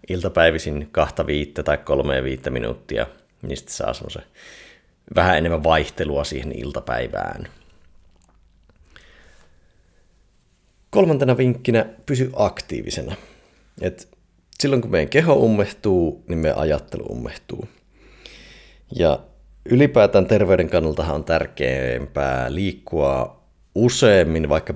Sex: male